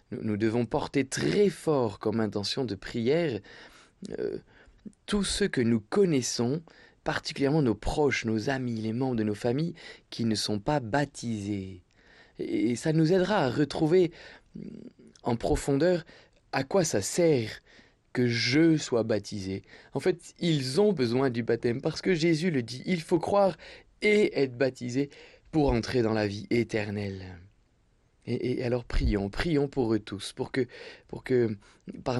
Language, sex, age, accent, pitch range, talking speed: French, male, 20-39, French, 110-145 Hz, 155 wpm